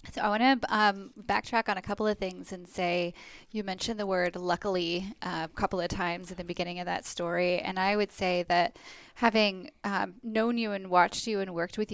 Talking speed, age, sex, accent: 215 wpm, 10-29, female, American